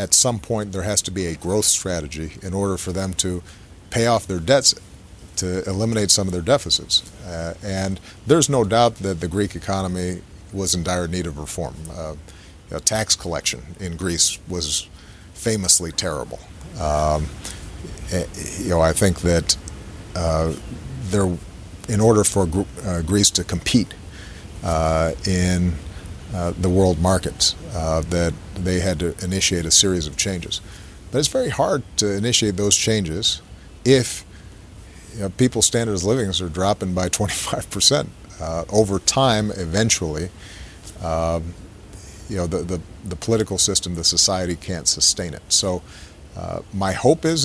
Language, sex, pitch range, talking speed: Dutch, male, 85-100 Hz, 150 wpm